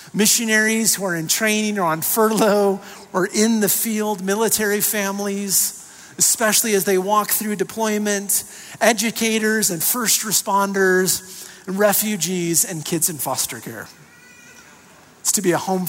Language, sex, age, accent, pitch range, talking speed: English, male, 40-59, American, 160-210 Hz, 130 wpm